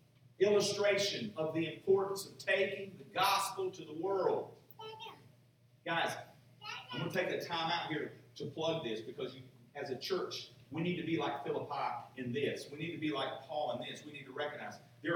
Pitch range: 130-190 Hz